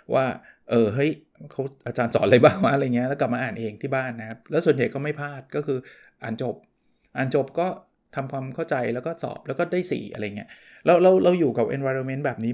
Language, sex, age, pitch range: Thai, male, 20-39, 120-155 Hz